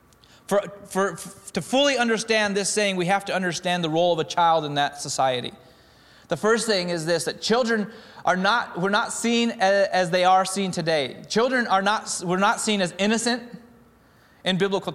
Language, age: English, 30-49